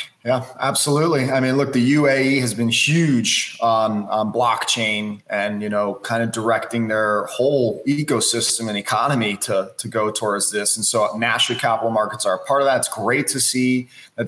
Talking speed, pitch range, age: 185 wpm, 115-135 Hz, 20-39